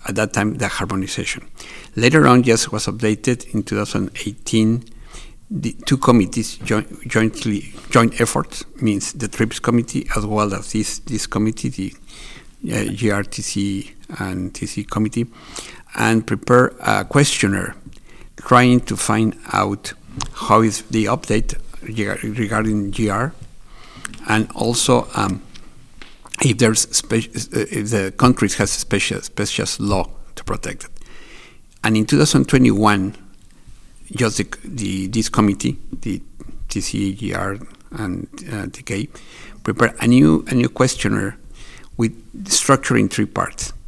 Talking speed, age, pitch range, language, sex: 120 wpm, 50-69, 100-115 Hz, French, male